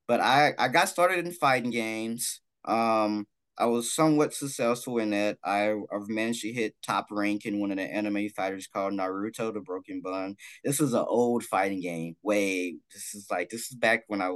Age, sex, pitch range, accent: 20-39, male, 105-135 Hz, American